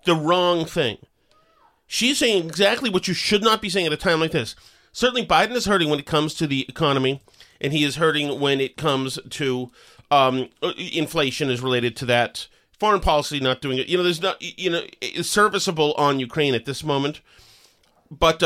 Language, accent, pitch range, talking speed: English, American, 145-205 Hz, 190 wpm